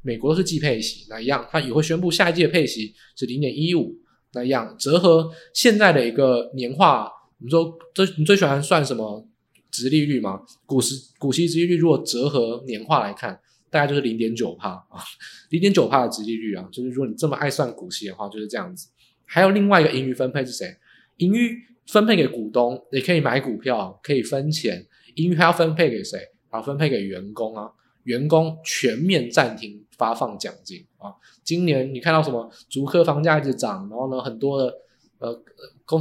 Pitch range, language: 120-165 Hz, Chinese